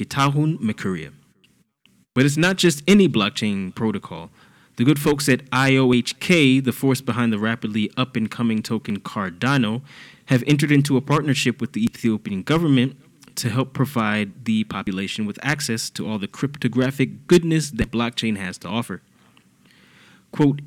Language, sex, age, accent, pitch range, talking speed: English, male, 20-39, American, 115-145 Hz, 135 wpm